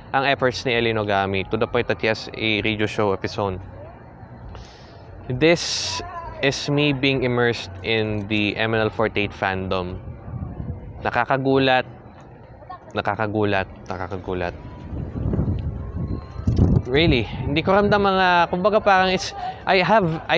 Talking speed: 105 wpm